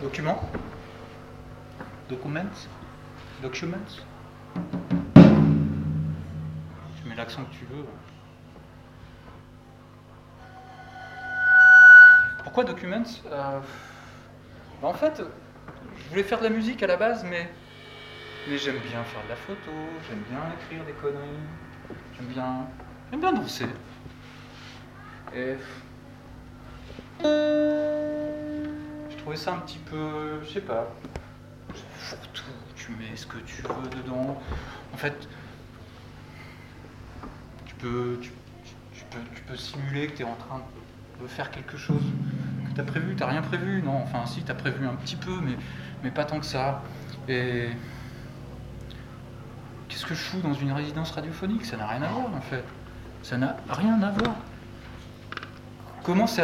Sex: male